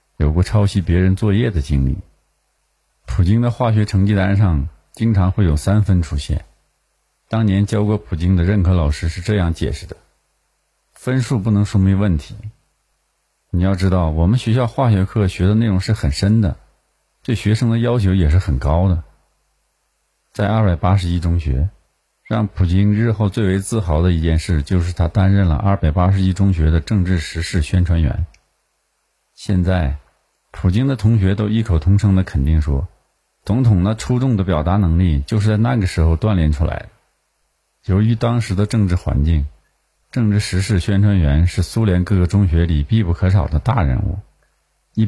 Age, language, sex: 50-69, Chinese, male